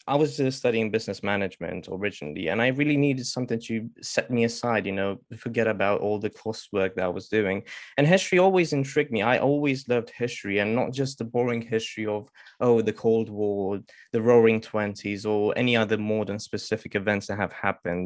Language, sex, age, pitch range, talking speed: English, male, 20-39, 105-125 Hz, 195 wpm